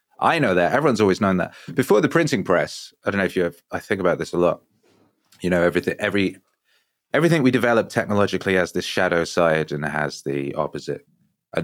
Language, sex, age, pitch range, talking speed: English, male, 20-39, 80-95 Hz, 210 wpm